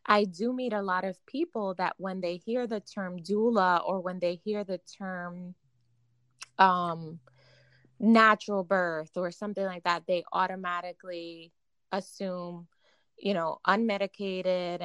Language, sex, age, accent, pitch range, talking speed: English, female, 20-39, American, 175-210 Hz, 135 wpm